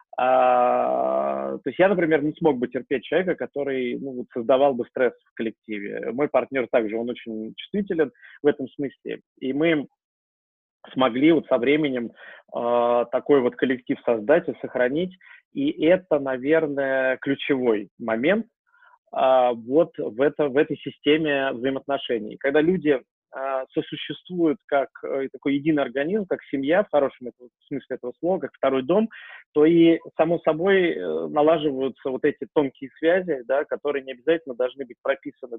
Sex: male